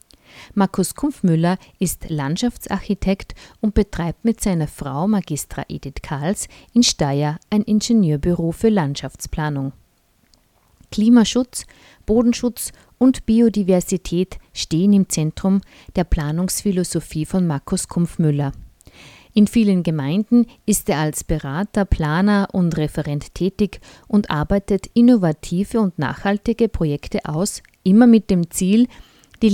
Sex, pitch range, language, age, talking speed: female, 160-215 Hz, German, 50-69, 110 wpm